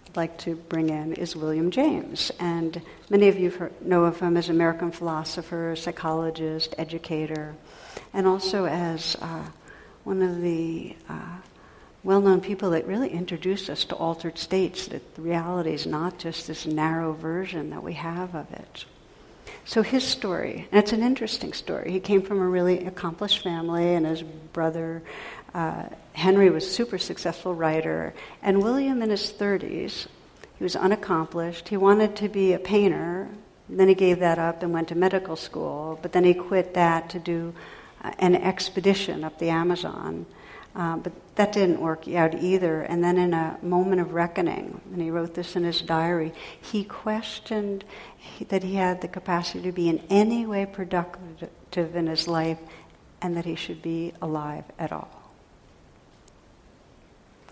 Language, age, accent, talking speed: English, 60-79, American, 165 wpm